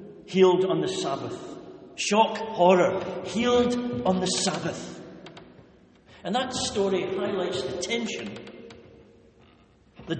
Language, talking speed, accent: English, 100 wpm, British